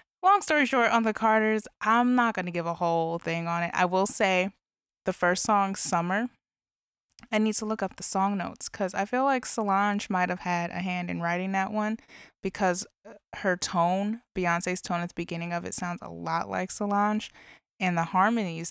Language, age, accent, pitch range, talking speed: English, 20-39, American, 170-205 Hz, 200 wpm